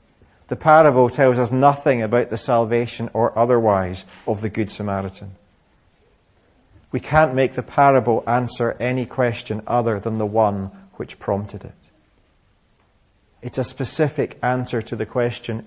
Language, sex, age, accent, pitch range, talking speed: English, male, 40-59, British, 110-140 Hz, 140 wpm